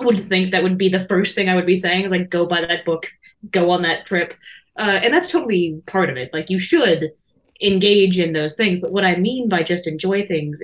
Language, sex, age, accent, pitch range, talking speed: English, female, 20-39, American, 165-195 Hz, 250 wpm